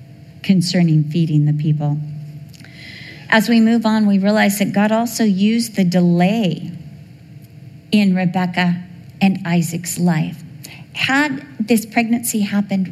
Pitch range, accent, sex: 160-225 Hz, American, female